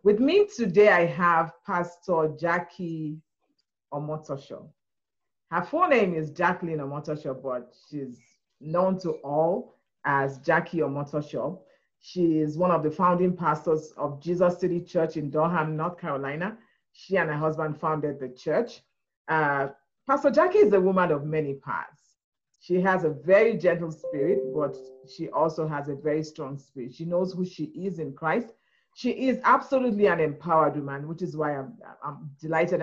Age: 50-69